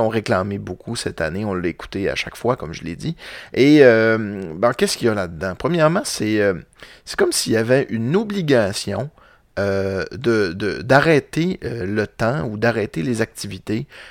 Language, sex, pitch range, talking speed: French, male, 100-125 Hz, 180 wpm